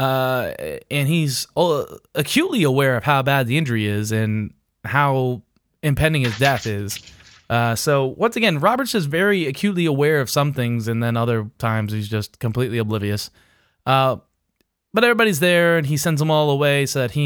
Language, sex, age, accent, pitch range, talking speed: English, male, 20-39, American, 115-145 Hz, 175 wpm